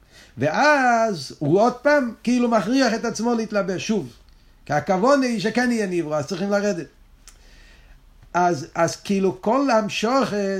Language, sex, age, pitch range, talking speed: Hebrew, male, 50-69, 175-235 Hz, 135 wpm